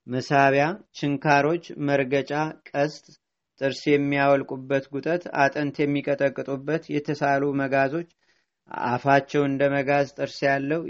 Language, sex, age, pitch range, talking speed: Amharic, male, 30-49, 135-145 Hz, 90 wpm